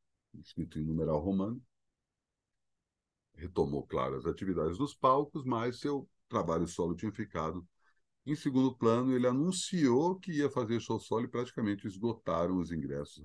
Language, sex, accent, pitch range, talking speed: Portuguese, male, Brazilian, 80-115 Hz, 140 wpm